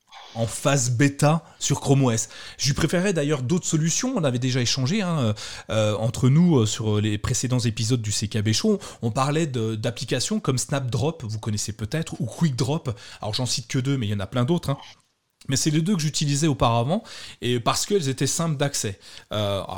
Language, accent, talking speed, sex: French, French, 200 wpm, male